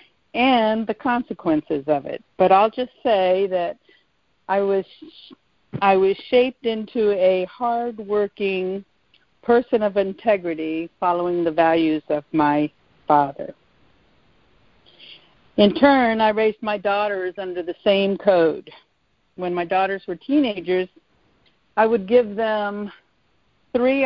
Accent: American